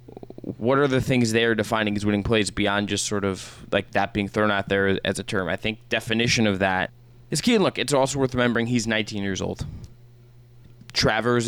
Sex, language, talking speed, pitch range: male, English, 205 wpm, 105-125 Hz